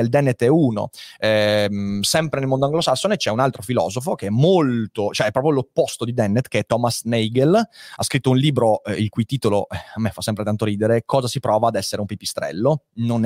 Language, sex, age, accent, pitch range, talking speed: Italian, male, 30-49, native, 105-135 Hz, 215 wpm